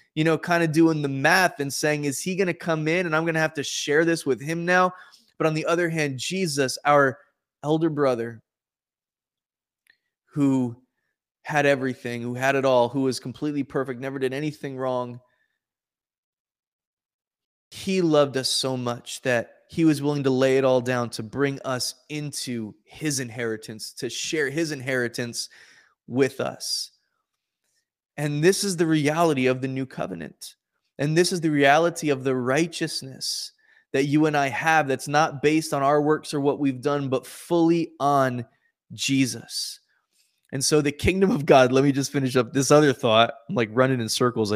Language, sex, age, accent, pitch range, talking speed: English, male, 20-39, American, 130-155 Hz, 175 wpm